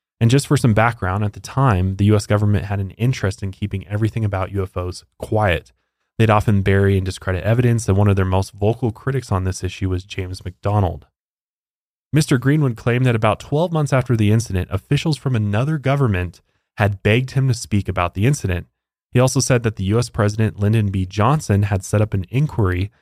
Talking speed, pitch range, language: 200 wpm, 95-120 Hz, English